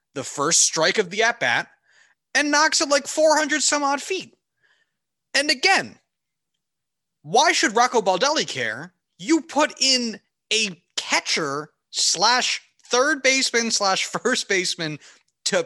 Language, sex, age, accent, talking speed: English, male, 30-49, American, 125 wpm